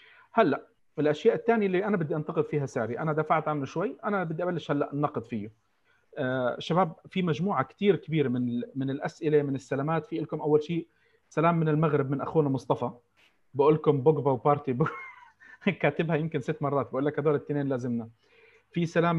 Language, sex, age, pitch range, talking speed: Arabic, male, 40-59, 130-160 Hz, 175 wpm